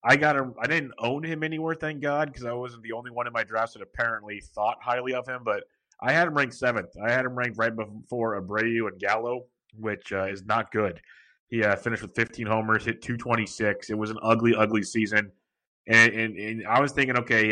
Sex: male